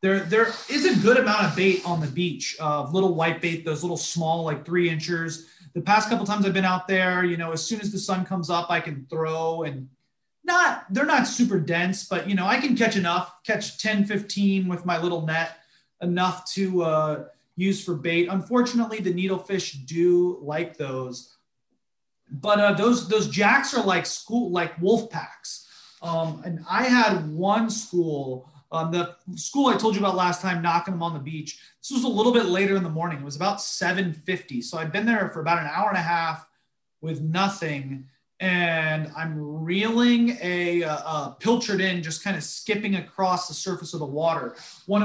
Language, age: English, 30-49